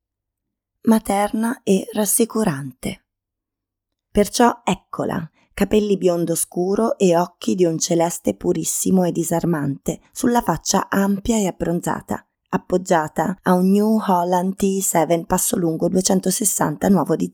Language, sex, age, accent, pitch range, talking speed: Italian, female, 20-39, native, 160-195 Hz, 110 wpm